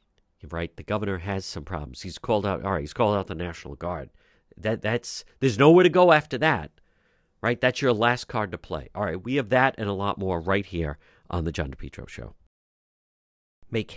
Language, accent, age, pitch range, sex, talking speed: English, American, 50-69, 90-130 Hz, male, 210 wpm